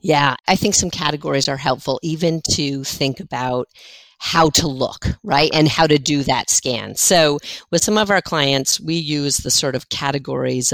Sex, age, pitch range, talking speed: female, 50-69, 135-170 Hz, 185 wpm